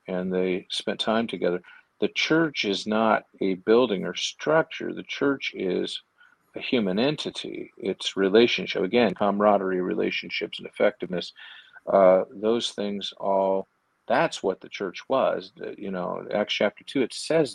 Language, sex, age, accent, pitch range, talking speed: English, male, 50-69, American, 95-110 Hz, 145 wpm